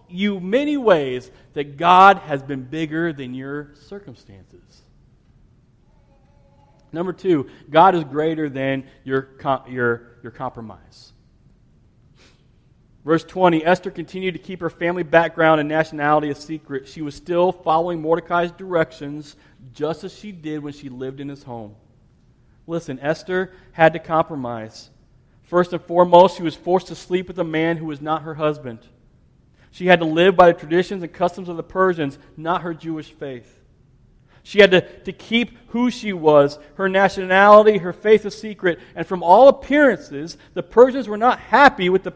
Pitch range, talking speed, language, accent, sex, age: 140-190 Hz, 160 wpm, English, American, male, 40-59